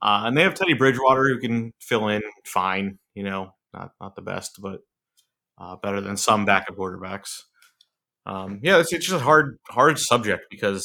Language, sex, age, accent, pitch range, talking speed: English, male, 30-49, American, 100-125 Hz, 190 wpm